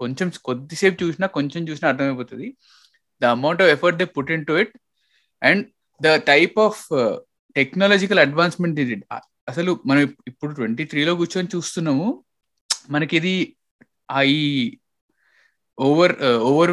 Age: 20-39